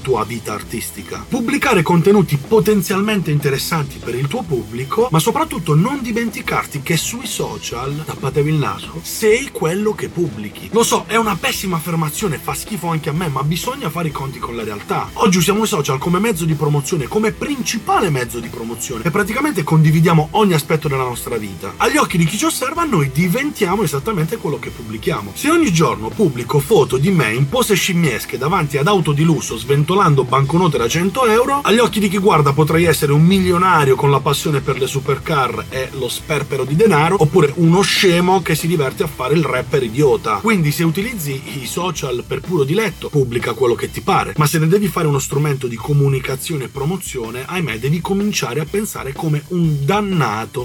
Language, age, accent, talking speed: Italian, 30-49, native, 190 wpm